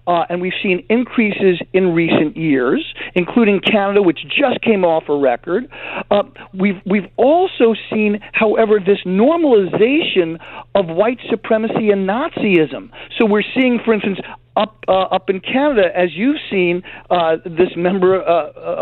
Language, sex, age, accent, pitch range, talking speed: English, male, 50-69, American, 190-250 Hz, 145 wpm